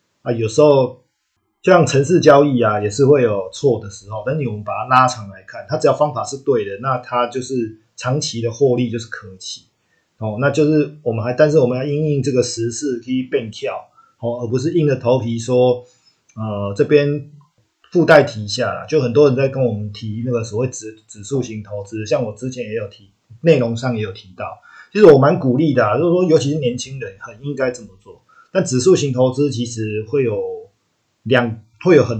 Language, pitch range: Chinese, 115-145 Hz